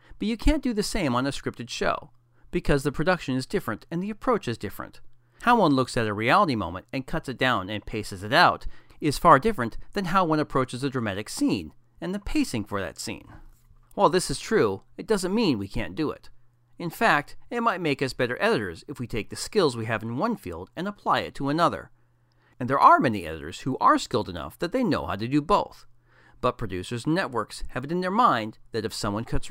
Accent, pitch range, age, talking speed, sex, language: American, 115-160 Hz, 40-59, 230 wpm, male, English